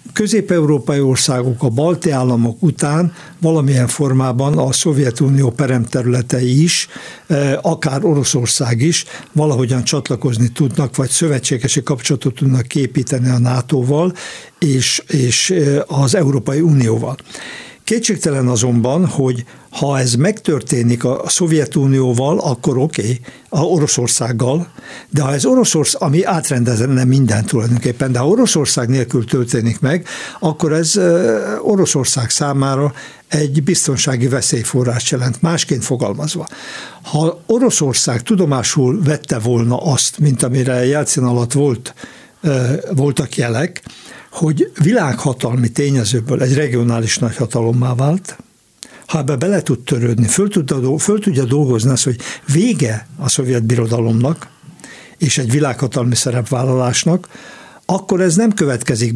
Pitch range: 125-160 Hz